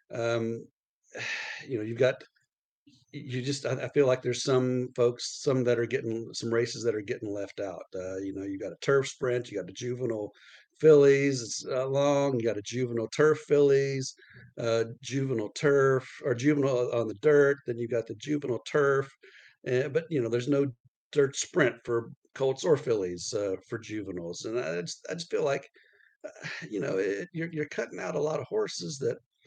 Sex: male